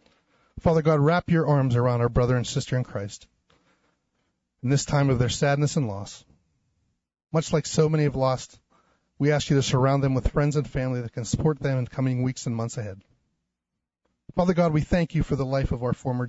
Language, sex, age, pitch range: English, male, 30-49, 115-145 Hz